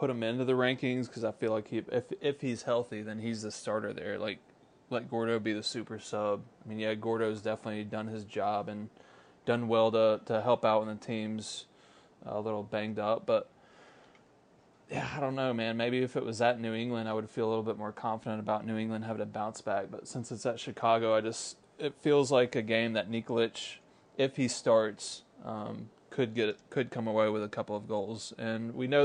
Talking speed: 225 wpm